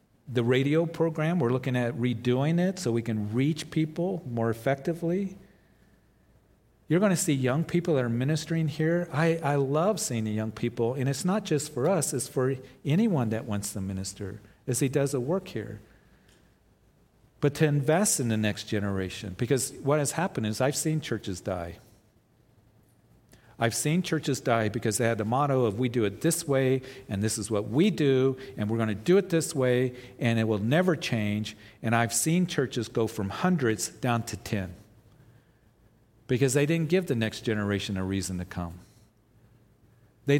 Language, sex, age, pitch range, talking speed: English, male, 50-69, 110-155 Hz, 185 wpm